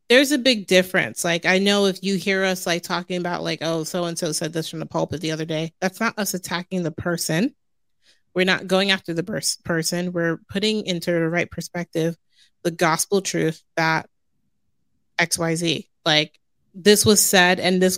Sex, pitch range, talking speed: female, 165-185 Hz, 190 wpm